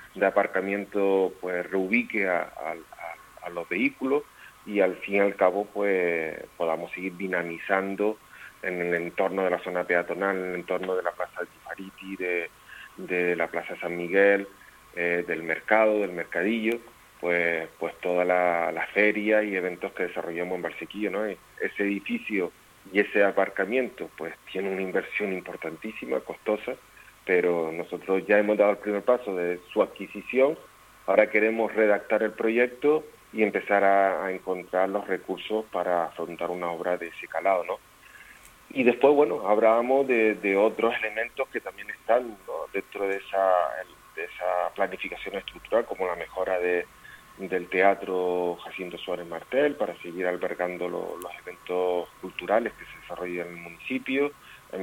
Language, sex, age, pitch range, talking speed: Spanish, male, 40-59, 90-105 Hz, 155 wpm